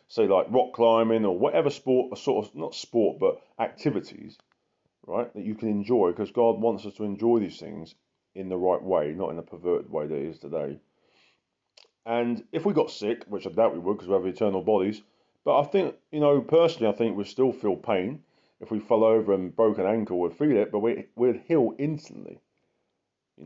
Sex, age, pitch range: male, 30-49, 100-135 Hz